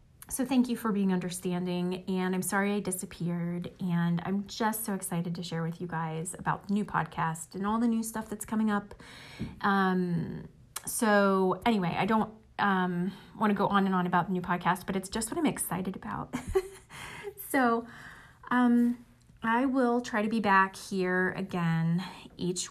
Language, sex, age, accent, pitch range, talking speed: English, female, 30-49, American, 180-220 Hz, 175 wpm